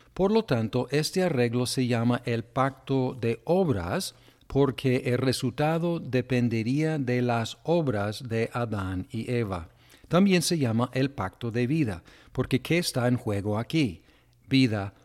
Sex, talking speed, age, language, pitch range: male, 145 wpm, 50-69, Spanish, 115-145 Hz